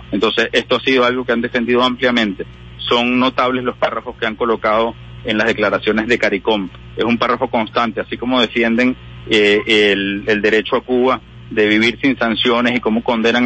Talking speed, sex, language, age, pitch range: 185 wpm, male, Spanish, 40-59, 105-125 Hz